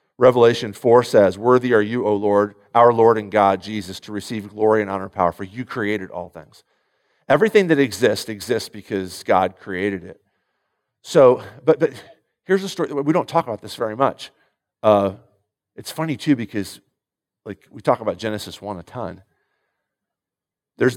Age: 50-69